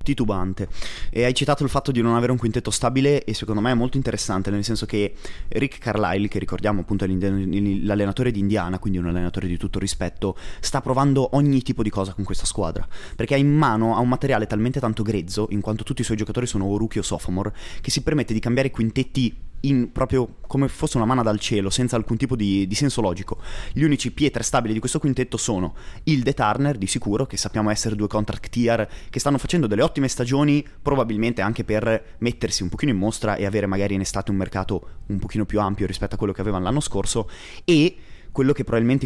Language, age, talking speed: Italian, 20-39, 215 wpm